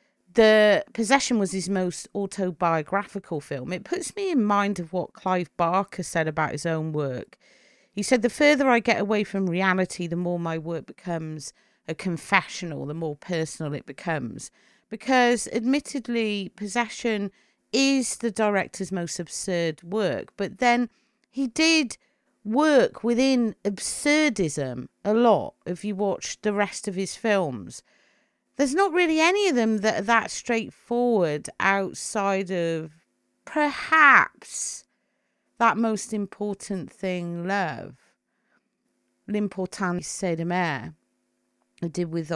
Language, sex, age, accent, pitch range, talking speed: English, female, 40-59, British, 175-240 Hz, 130 wpm